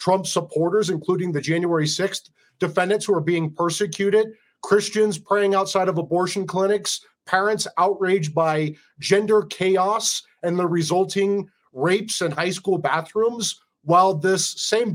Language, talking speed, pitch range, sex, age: English, 135 wpm, 165-200 Hz, male, 40-59